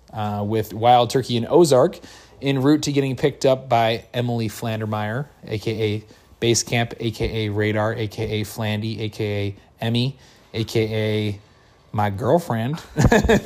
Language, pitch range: English, 110-135 Hz